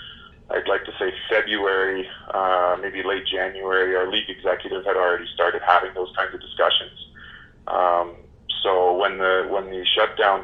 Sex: male